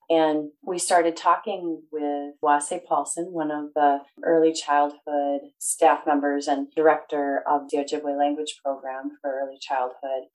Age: 30-49